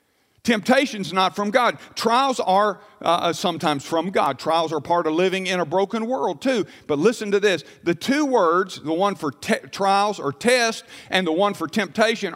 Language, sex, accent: English, male, American